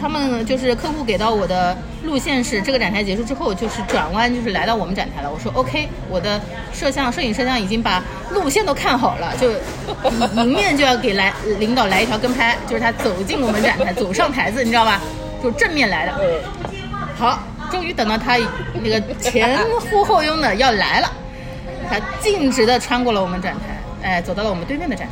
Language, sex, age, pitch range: Chinese, female, 30-49, 225-340 Hz